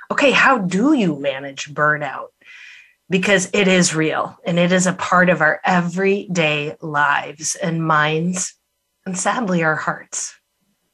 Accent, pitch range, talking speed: American, 165-205 Hz, 135 wpm